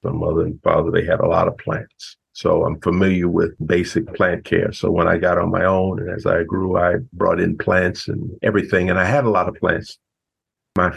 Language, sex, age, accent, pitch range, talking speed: English, male, 50-69, American, 85-105 Hz, 230 wpm